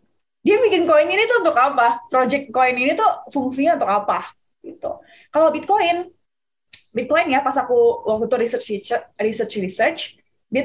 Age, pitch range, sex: 20-39, 240-330 Hz, female